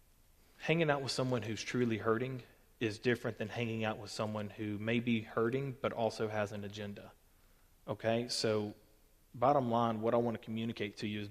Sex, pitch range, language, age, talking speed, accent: male, 100-120 Hz, English, 30-49, 185 wpm, American